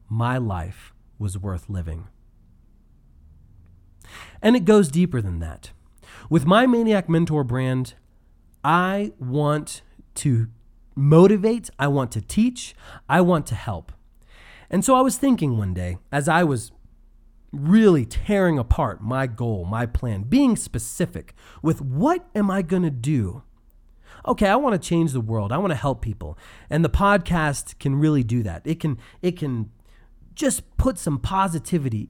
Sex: male